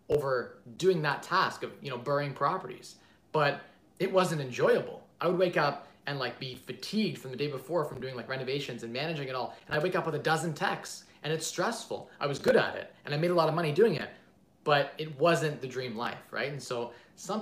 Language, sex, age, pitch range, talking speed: English, male, 20-39, 120-160 Hz, 235 wpm